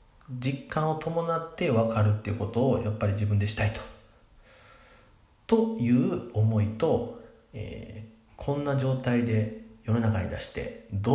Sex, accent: male, native